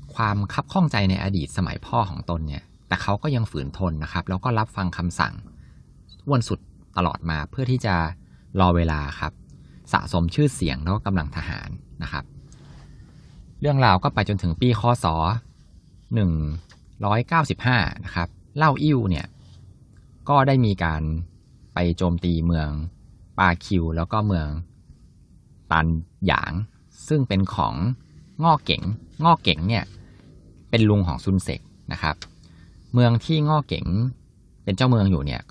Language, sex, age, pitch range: Thai, male, 20-39, 85-115 Hz